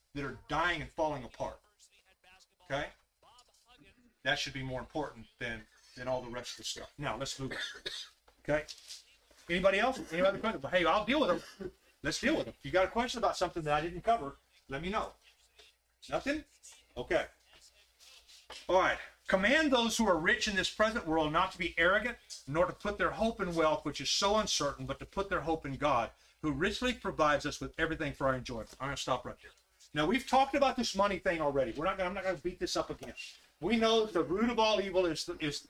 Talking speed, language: 220 wpm, English